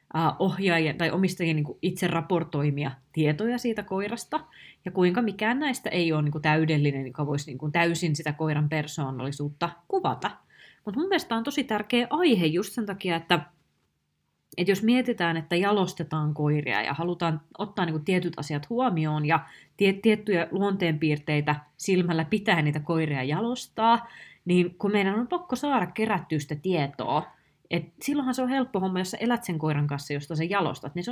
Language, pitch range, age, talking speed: Finnish, 155-220 Hz, 20-39, 160 wpm